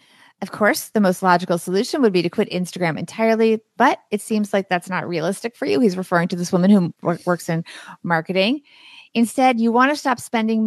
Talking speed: 200 wpm